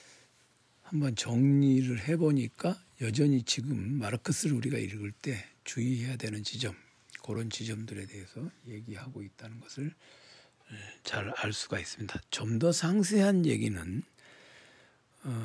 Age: 60-79